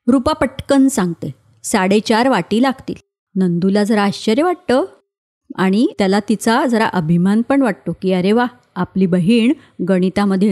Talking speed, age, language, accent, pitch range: 130 wpm, 30-49, Marathi, native, 185-230 Hz